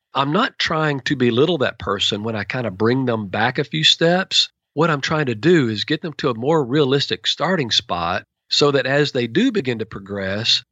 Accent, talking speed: American, 220 wpm